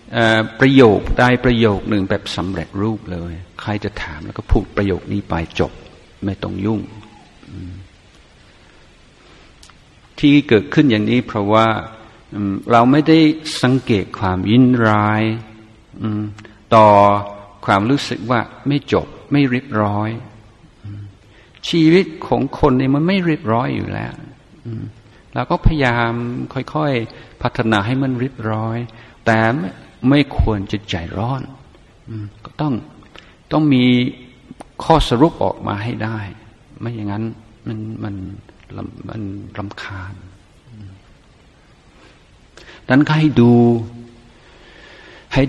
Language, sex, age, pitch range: Thai, male, 60-79, 100-125 Hz